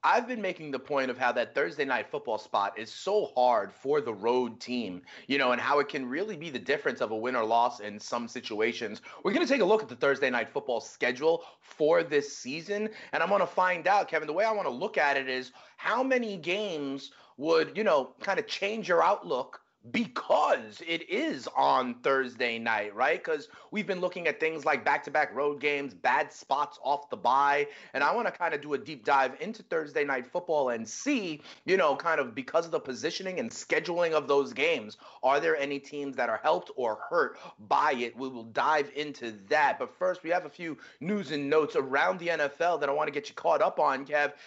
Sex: male